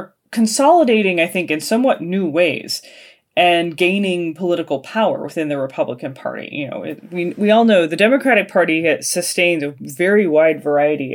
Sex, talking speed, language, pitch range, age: female, 170 wpm, English, 155-210 Hz, 20-39